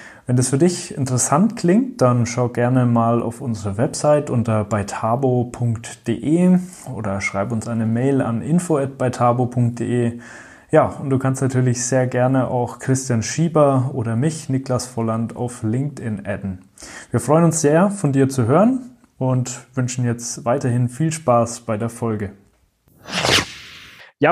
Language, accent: German, German